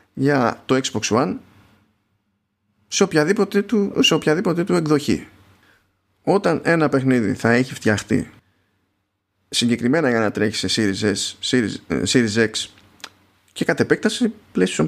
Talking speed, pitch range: 115 wpm, 100-140 Hz